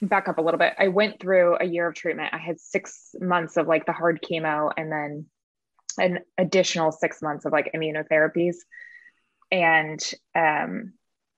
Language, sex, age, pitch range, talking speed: English, female, 20-39, 160-195 Hz, 170 wpm